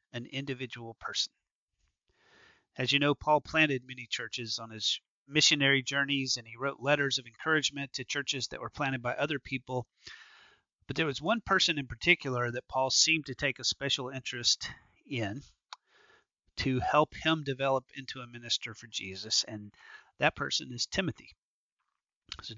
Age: 40-59